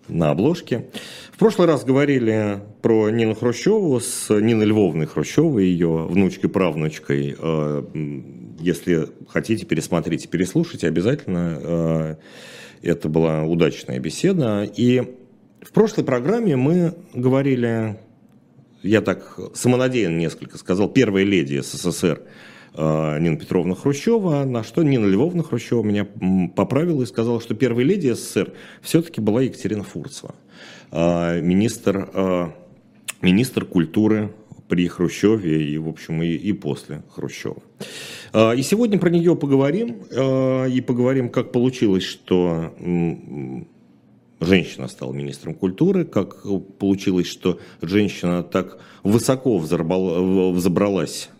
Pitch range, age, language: 85-125 Hz, 40-59, Russian